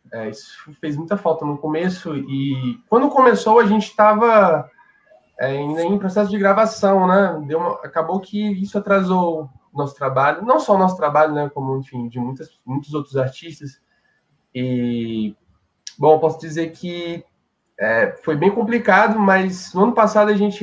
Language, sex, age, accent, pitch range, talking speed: Portuguese, male, 20-39, Brazilian, 135-200 Hz, 165 wpm